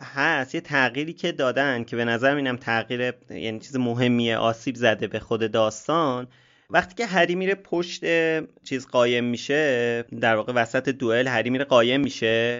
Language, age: Persian, 30-49